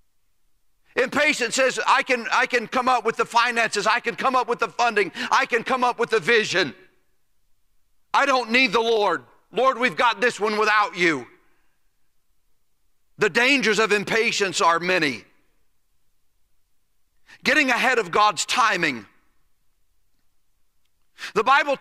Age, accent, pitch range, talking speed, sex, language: 40-59, American, 230-275 Hz, 135 wpm, male, English